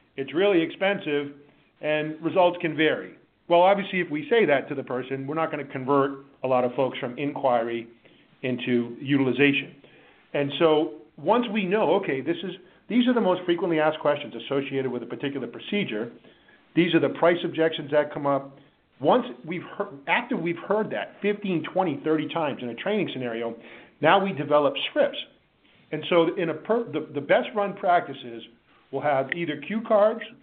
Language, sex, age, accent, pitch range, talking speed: English, male, 50-69, American, 135-175 Hz, 180 wpm